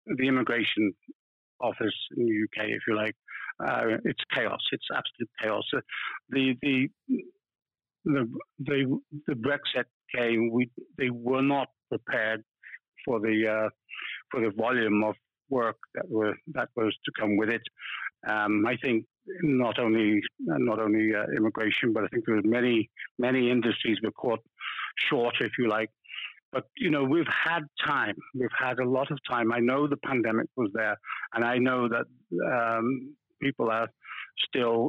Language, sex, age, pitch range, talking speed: English, male, 60-79, 110-130 Hz, 160 wpm